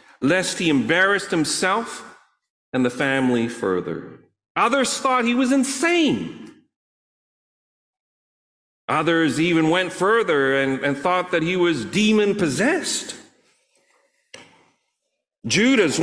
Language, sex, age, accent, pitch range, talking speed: English, male, 40-59, American, 130-215 Hz, 95 wpm